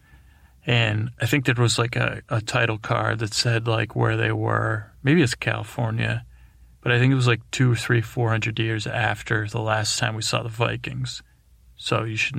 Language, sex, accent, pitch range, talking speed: English, male, American, 110-125 Hz, 195 wpm